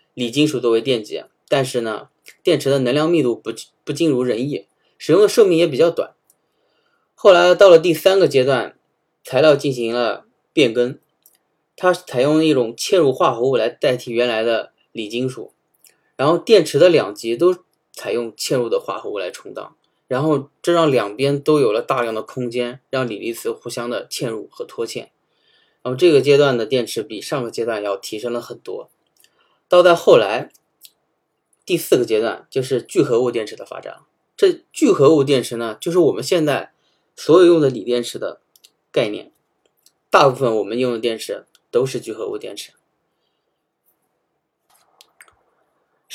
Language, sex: Chinese, male